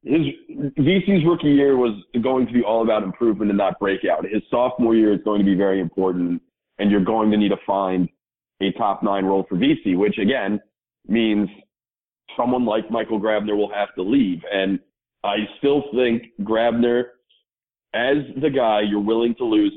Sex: male